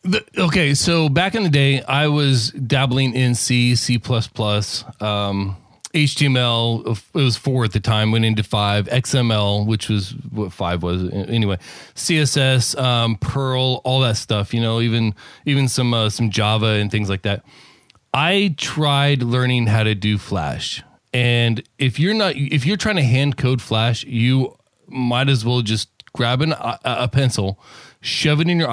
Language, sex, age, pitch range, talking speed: English, male, 20-39, 110-140 Hz, 170 wpm